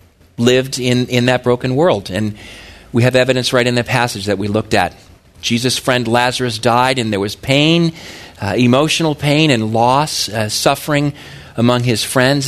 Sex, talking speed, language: male, 175 wpm, English